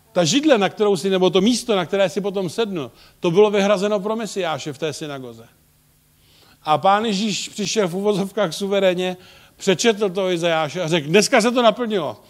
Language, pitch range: Czech, 135-195 Hz